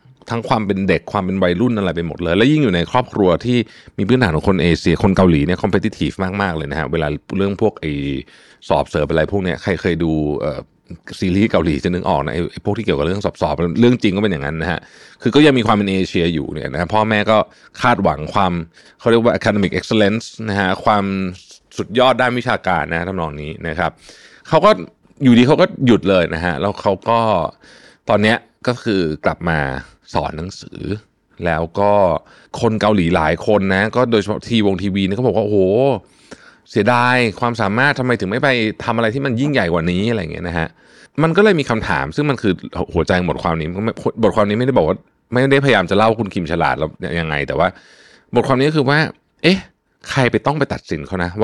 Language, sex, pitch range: Thai, male, 85-120 Hz